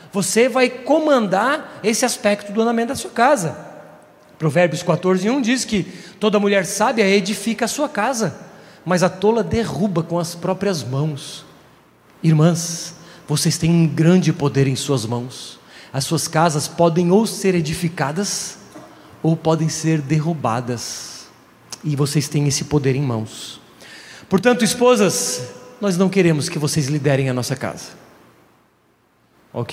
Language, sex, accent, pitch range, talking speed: Portuguese, male, Brazilian, 145-195 Hz, 135 wpm